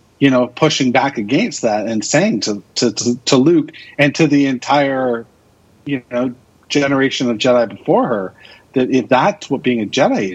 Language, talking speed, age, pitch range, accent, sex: English, 180 wpm, 40-59, 115-145 Hz, American, male